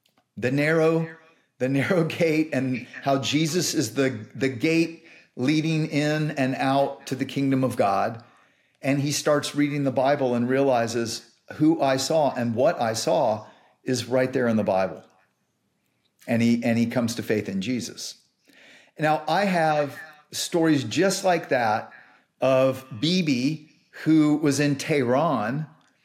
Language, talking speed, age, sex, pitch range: English, 145 wpm, 50-69, male, 130-160 Hz